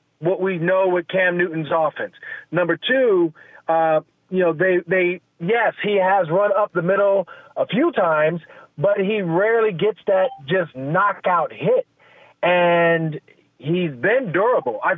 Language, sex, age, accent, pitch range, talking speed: English, male, 40-59, American, 170-215 Hz, 150 wpm